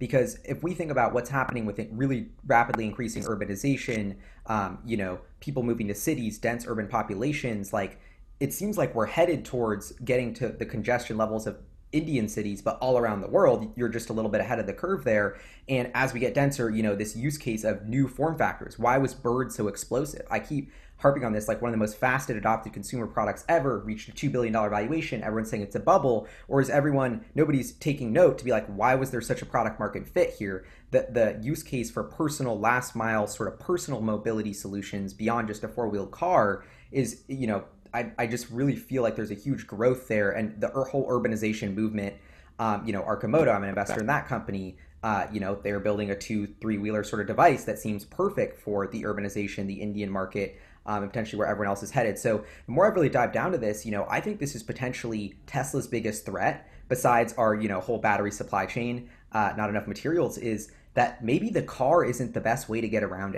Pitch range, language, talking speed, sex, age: 105-130 Hz, English, 220 wpm, male, 20-39